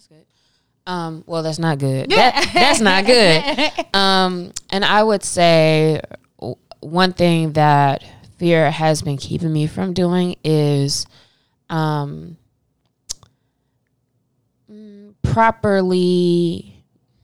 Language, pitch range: English, 135-165 Hz